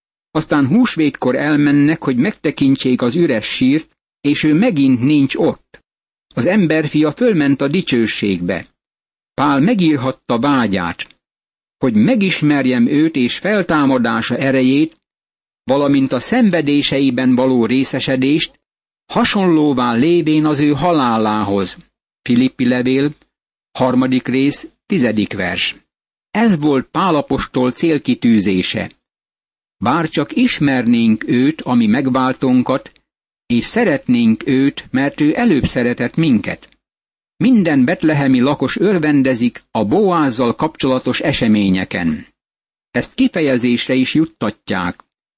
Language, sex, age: Hungarian, male, 60-79